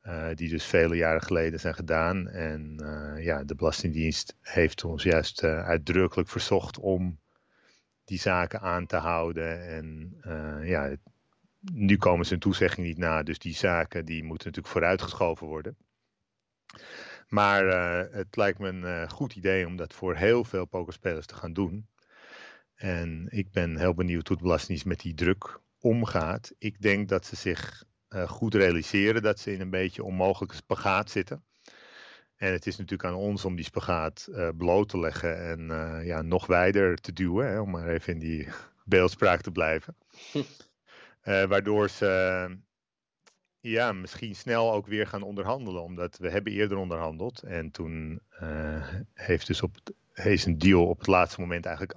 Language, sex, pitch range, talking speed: Dutch, male, 85-100 Hz, 175 wpm